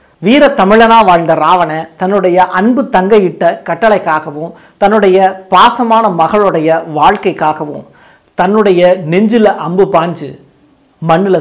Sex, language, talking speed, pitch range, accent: male, Tamil, 90 wpm, 155-195 Hz, native